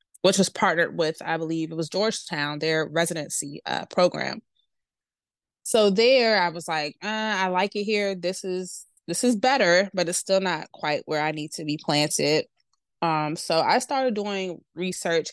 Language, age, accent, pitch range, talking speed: English, 20-39, American, 155-190 Hz, 175 wpm